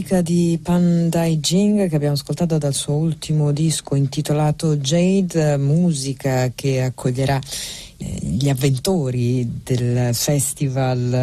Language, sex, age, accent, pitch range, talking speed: Italian, female, 40-59, native, 130-160 Hz, 105 wpm